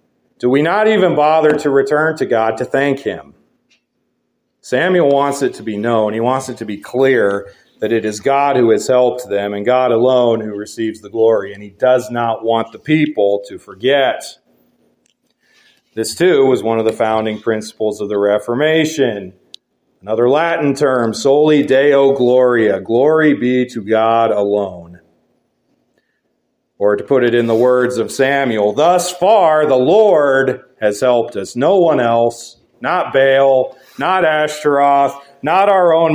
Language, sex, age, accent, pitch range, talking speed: English, male, 40-59, American, 110-145 Hz, 160 wpm